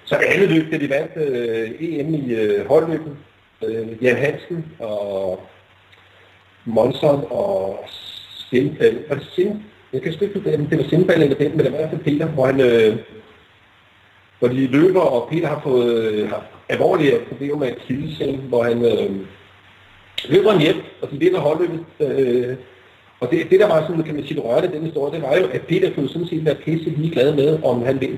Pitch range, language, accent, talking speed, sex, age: 115-165 Hz, Danish, native, 185 wpm, male, 40-59